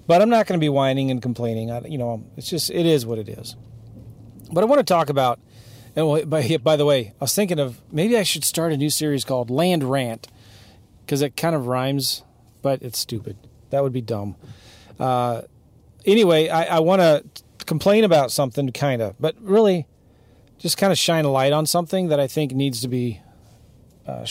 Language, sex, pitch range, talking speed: English, male, 120-165 Hz, 205 wpm